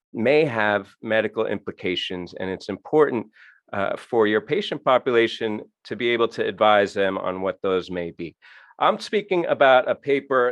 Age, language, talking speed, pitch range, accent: 40-59, English, 160 wpm, 95-120 Hz, American